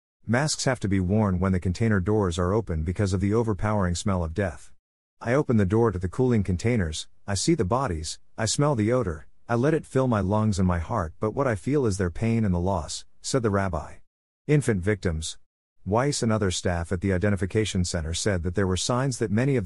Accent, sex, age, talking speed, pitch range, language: American, male, 50-69, 225 wpm, 90-110 Hz, English